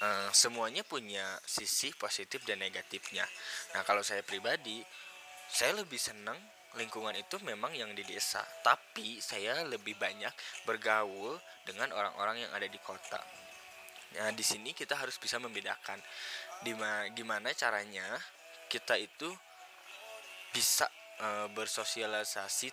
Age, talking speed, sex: 10-29, 115 wpm, male